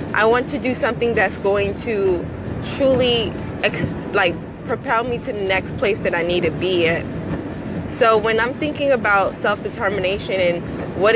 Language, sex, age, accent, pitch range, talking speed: English, female, 20-39, American, 185-220 Hz, 165 wpm